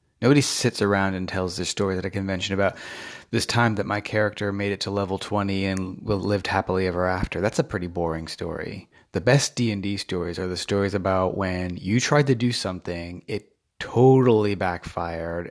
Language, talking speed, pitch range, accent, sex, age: English, 185 wpm, 95-110 Hz, American, male, 30-49